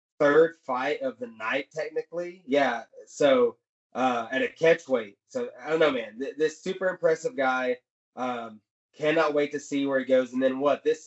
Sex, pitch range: male, 135-180 Hz